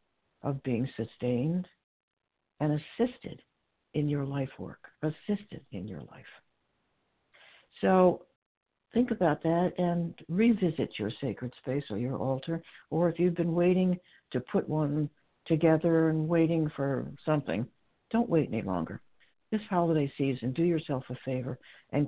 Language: English